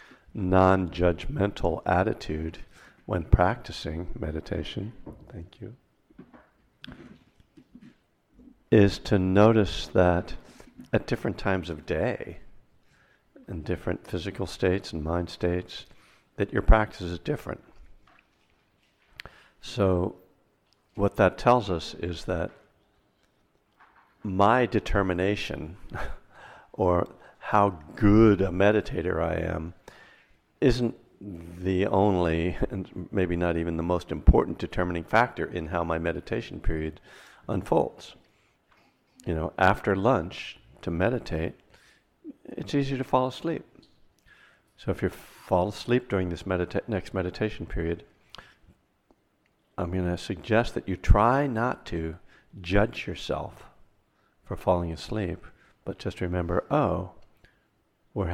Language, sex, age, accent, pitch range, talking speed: English, male, 60-79, American, 85-105 Hz, 105 wpm